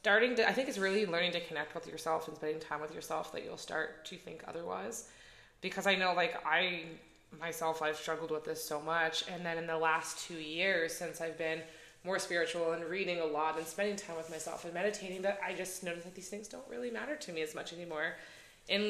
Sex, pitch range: female, 160-200 Hz